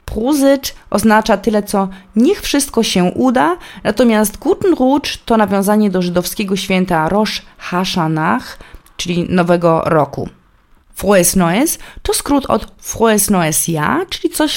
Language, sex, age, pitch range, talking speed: Polish, female, 20-39, 170-230 Hz, 130 wpm